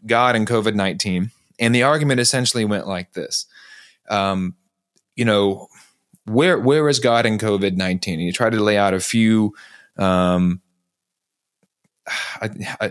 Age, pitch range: 30-49, 95-130 Hz